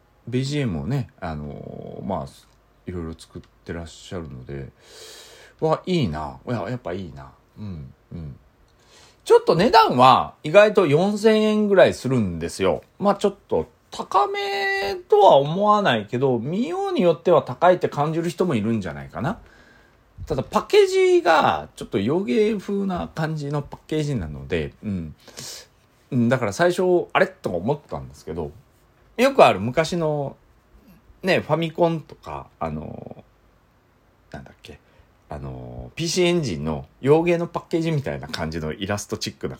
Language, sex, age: Japanese, male, 40-59